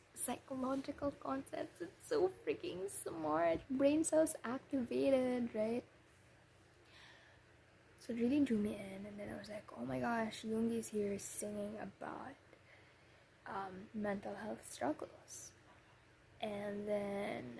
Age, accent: 10-29, Filipino